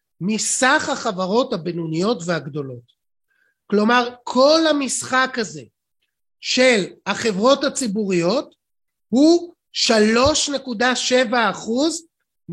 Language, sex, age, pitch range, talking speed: Hebrew, male, 30-49, 210-270 Hz, 60 wpm